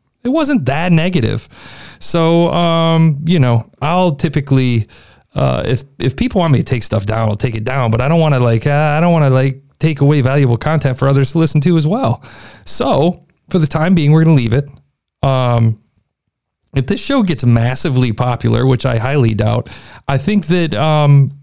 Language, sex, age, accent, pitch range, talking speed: English, male, 40-59, American, 125-165 Hz, 200 wpm